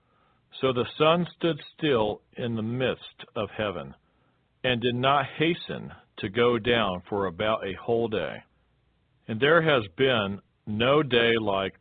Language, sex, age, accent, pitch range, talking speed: English, male, 50-69, American, 105-135 Hz, 145 wpm